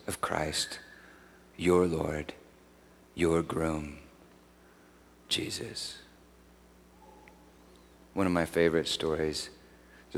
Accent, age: American, 40-59